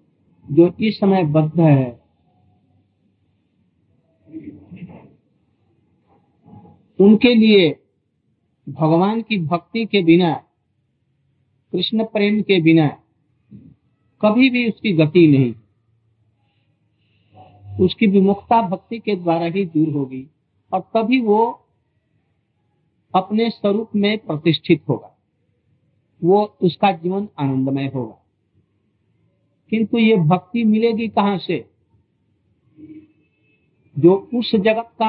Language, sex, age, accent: Hindi, male, 50-69, native